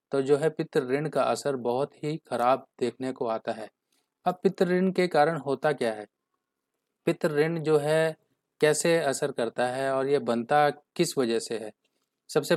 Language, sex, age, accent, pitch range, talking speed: Hindi, male, 30-49, native, 120-150 Hz, 165 wpm